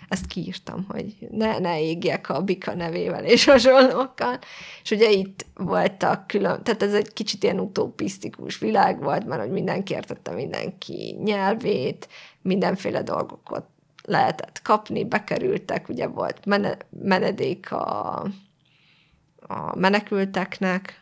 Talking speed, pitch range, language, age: 115 wpm, 175-200 Hz, Hungarian, 20-39